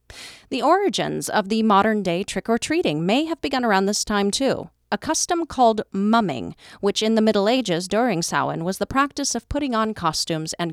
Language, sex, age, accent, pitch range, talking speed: English, female, 40-59, American, 185-275 Hz, 180 wpm